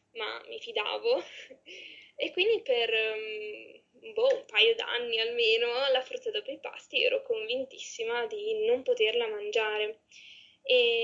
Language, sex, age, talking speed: Italian, female, 10-29, 125 wpm